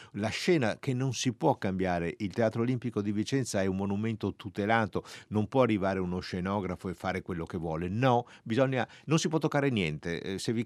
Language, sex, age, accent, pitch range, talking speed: Italian, male, 50-69, native, 95-135 Hz, 195 wpm